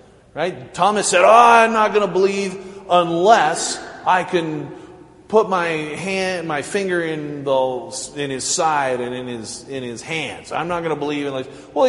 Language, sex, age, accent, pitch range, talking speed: English, male, 30-49, American, 150-225 Hz, 175 wpm